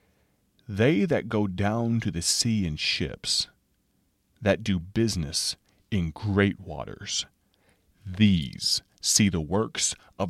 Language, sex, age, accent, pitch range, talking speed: English, male, 30-49, American, 95-120 Hz, 115 wpm